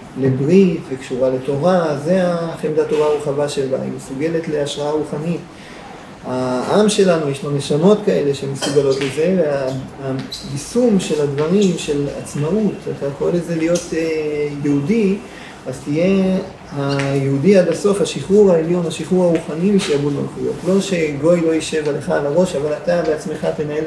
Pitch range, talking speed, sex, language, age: 145-180 Hz, 130 wpm, male, Hebrew, 40-59